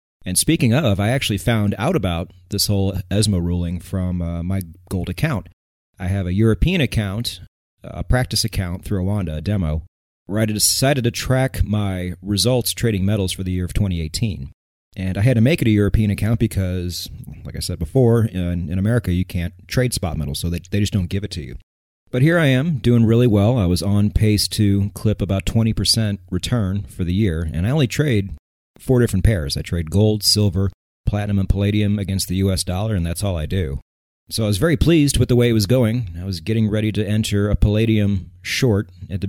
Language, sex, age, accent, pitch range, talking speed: English, male, 30-49, American, 90-115 Hz, 210 wpm